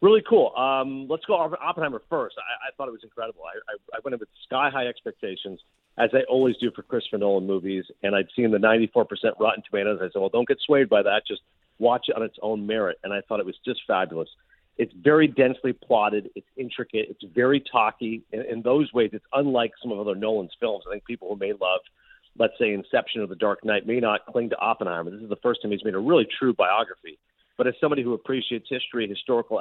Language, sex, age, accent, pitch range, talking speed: English, male, 50-69, American, 105-135 Hz, 235 wpm